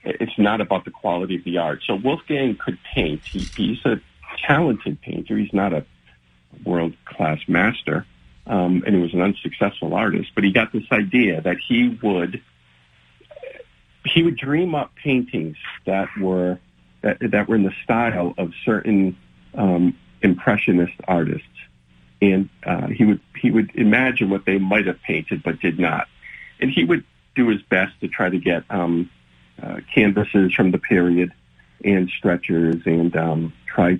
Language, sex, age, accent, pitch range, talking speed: English, male, 50-69, American, 85-110 Hz, 160 wpm